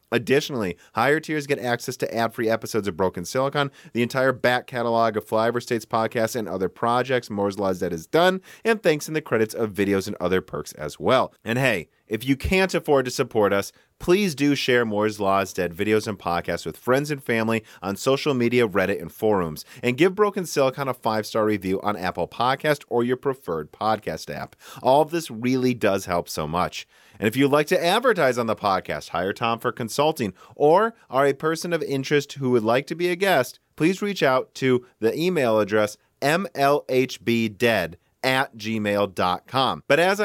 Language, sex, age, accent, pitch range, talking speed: English, male, 30-49, American, 110-145 Hz, 190 wpm